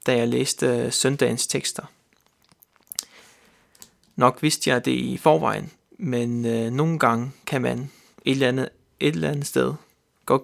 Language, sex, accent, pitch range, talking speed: Danish, male, native, 125-155 Hz, 145 wpm